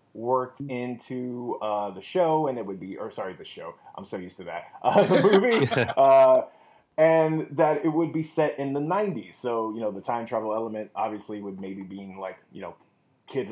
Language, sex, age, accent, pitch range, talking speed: English, male, 20-39, American, 110-150 Hz, 195 wpm